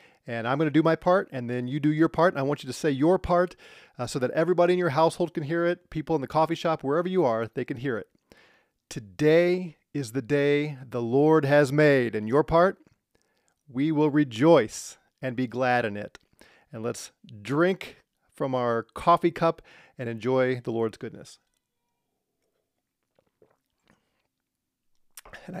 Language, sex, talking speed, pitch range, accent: English, male, 175 wpm, 125-160 Hz, American